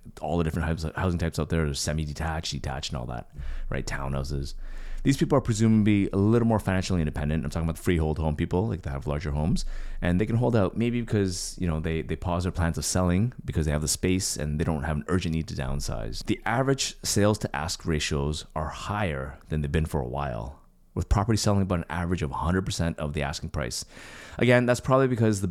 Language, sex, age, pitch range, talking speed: English, male, 30-49, 75-100 Hz, 235 wpm